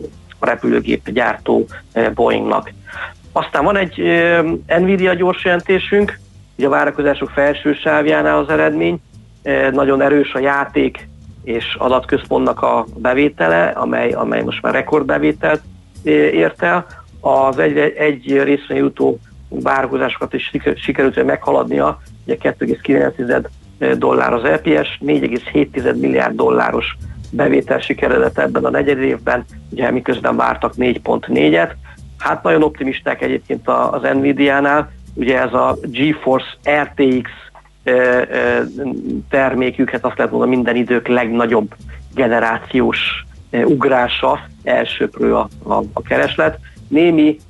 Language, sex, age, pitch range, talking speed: Hungarian, male, 50-69, 100-140 Hz, 110 wpm